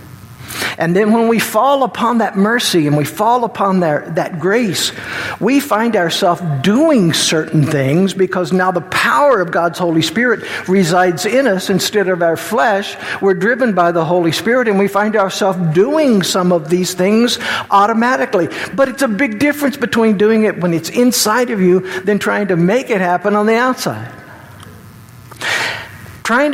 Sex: male